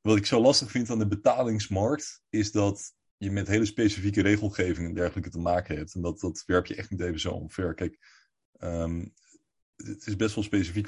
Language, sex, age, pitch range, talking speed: Dutch, male, 30-49, 90-110 Hz, 205 wpm